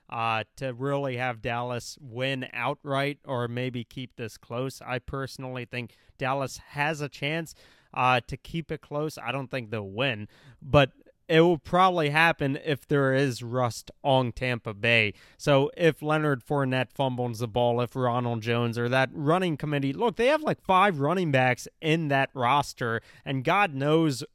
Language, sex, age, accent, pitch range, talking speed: English, male, 30-49, American, 125-155 Hz, 170 wpm